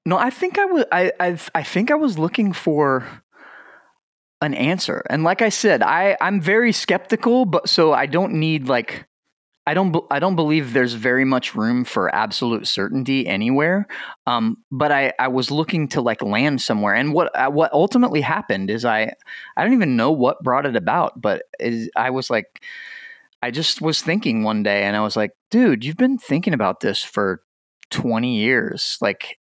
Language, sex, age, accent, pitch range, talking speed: English, male, 20-39, American, 115-175 Hz, 190 wpm